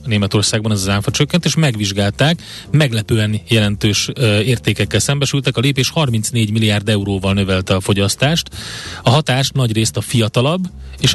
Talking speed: 140 wpm